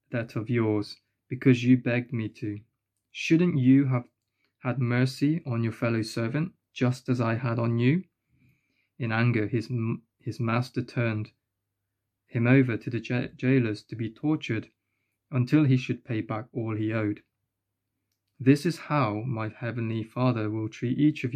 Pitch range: 110-130 Hz